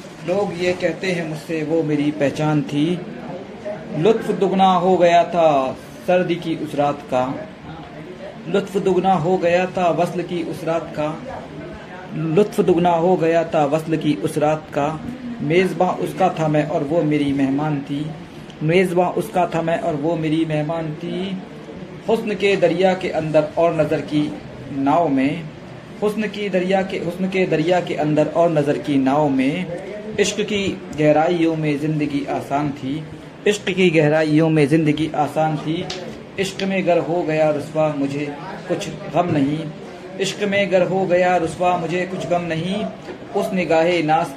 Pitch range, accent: 150-180 Hz, native